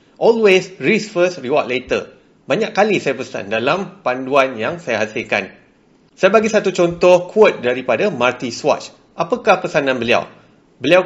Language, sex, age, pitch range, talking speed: Malay, male, 30-49, 140-200 Hz, 140 wpm